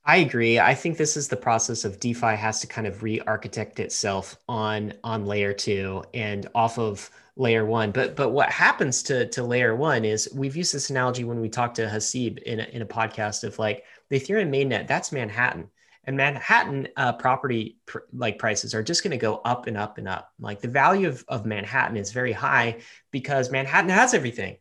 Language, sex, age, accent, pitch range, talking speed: English, male, 30-49, American, 115-150 Hz, 205 wpm